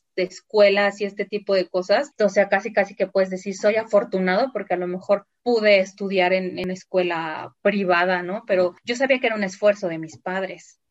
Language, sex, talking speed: Spanish, female, 205 wpm